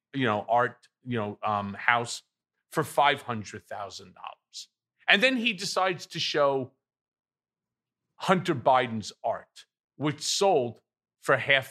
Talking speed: 130 wpm